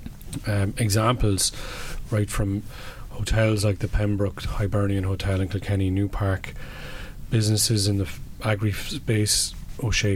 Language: English